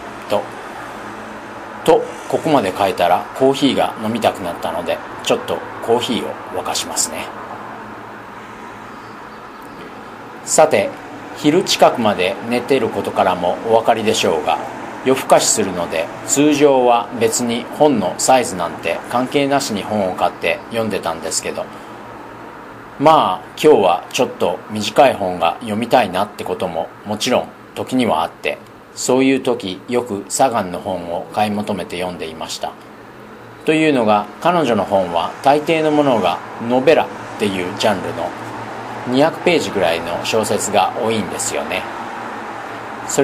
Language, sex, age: Japanese, male, 40-59